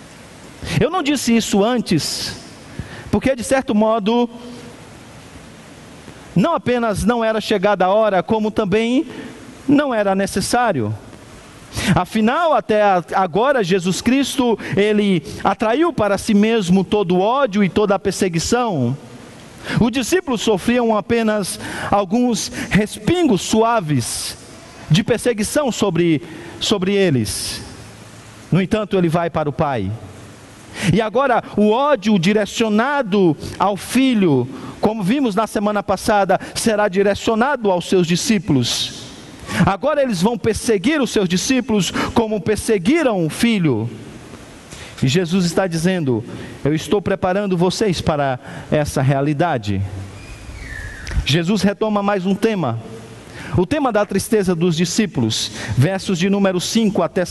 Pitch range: 155-225 Hz